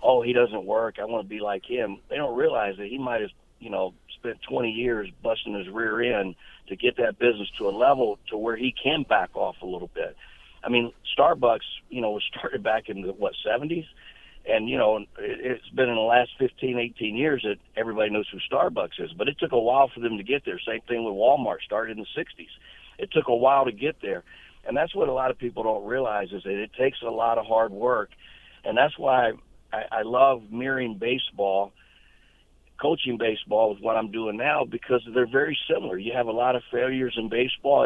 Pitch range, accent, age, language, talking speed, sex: 110-130 Hz, American, 50-69, English, 220 wpm, male